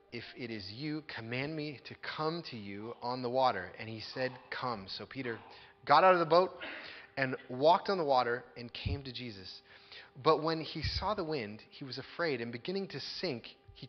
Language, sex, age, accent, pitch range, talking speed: English, male, 30-49, American, 100-140 Hz, 205 wpm